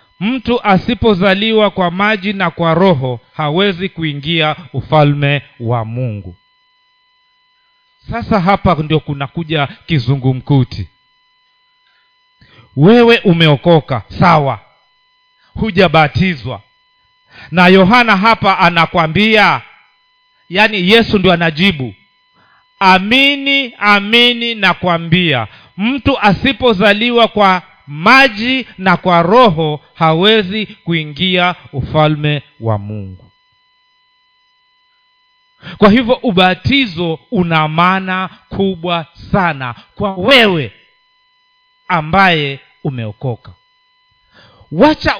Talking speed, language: 75 wpm, Swahili